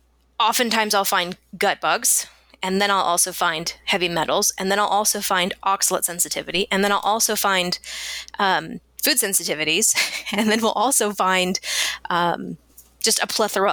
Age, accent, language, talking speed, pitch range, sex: 20-39, American, English, 155 wpm, 180-220 Hz, female